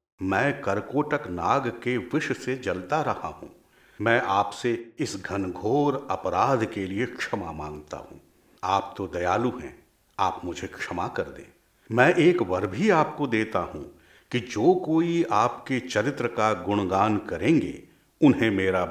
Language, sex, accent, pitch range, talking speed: Hindi, male, native, 95-160 Hz, 145 wpm